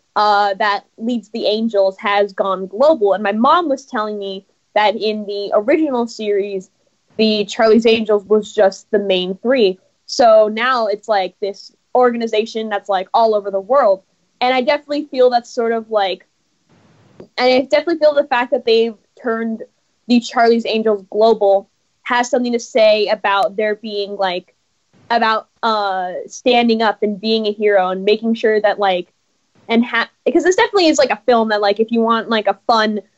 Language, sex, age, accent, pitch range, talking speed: English, female, 10-29, American, 205-255 Hz, 175 wpm